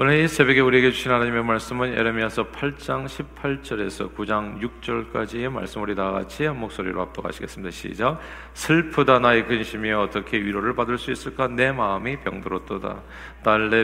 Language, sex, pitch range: Korean, male, 105-125 Hz